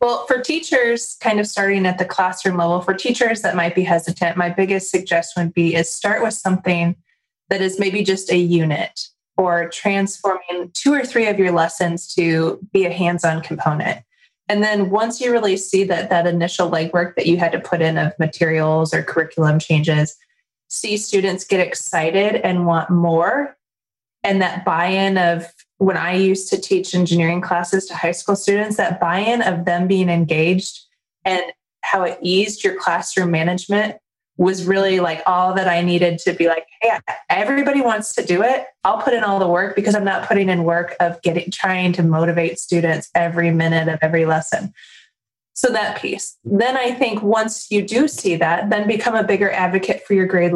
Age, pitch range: 20-39, 170-205 Hz